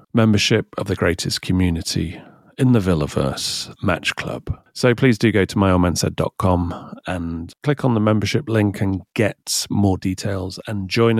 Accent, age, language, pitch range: British, 40-59, English, 95-115 Hz